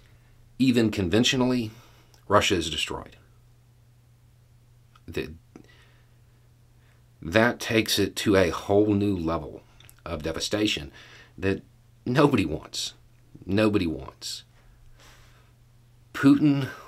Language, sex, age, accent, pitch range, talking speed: English, male, 50-69, American, 90-120 Hz, 75 wpm